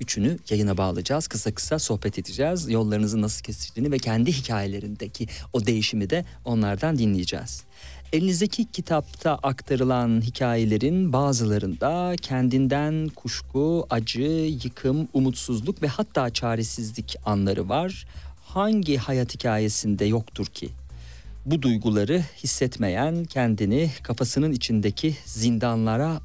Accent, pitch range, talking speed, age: native, 105-135 Hz, 105 wpm, 40-59